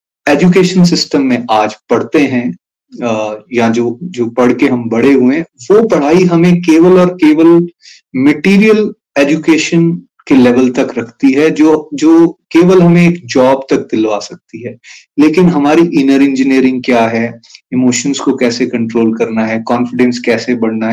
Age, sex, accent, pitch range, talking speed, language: 30-49, male, native, 120-170 Hz, 150 wpm, Hindi